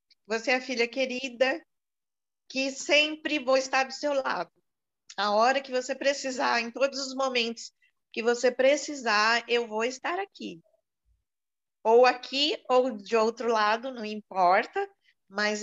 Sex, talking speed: female, 140 wpm